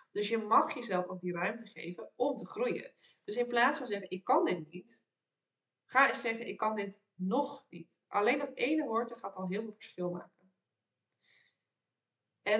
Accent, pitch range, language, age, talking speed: Dutch, 175-215 Hz, Dutch, 20-39, 185 wpm